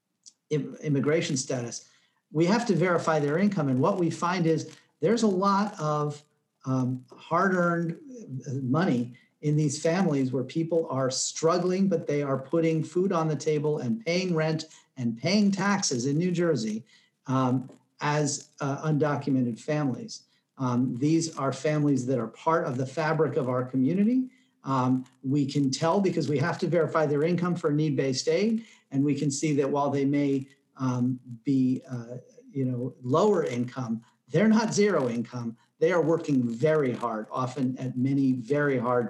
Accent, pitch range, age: American, 130-165 Hz, 50-69